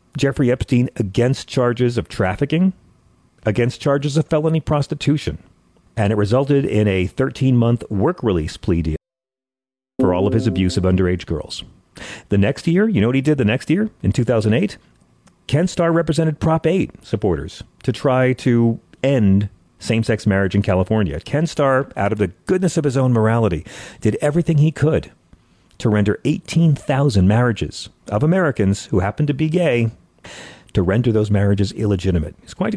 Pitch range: 95-140 Hz